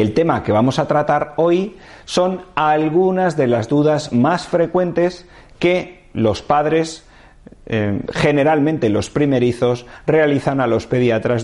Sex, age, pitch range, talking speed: male, 40-59, 110-155 Hz, 130 wpm